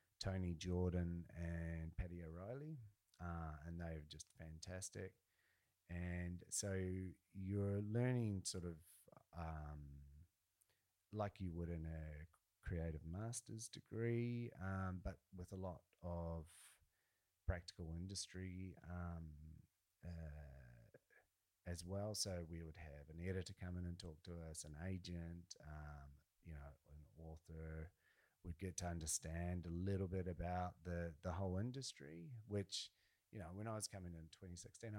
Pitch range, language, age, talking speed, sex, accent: 80-95 Hz, English, 30-49, 130 wpm, male, Australian